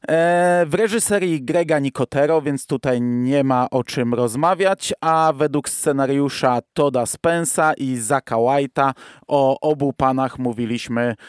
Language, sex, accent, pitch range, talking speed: Polish, male, native, 125-160 Hz, 120 wpm